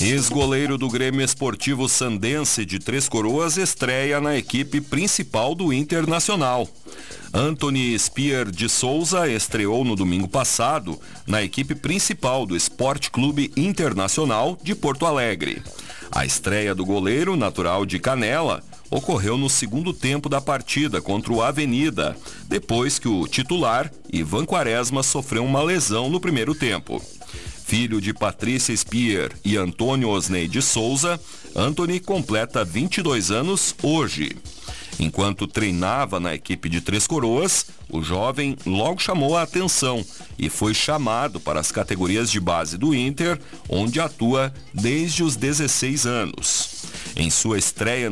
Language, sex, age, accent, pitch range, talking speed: Portuguese, male, 40-59, Brazilian, 105-145 Hz, 130 wpm